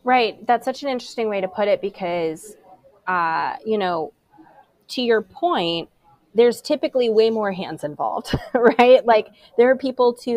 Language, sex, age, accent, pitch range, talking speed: English, female, 20-39, American, 170-220 Hz, 160 wpm